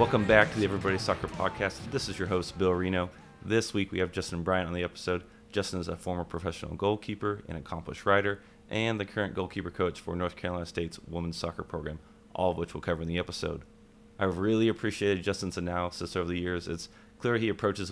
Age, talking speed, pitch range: 30-49, 215 wpm, 85-100 Hz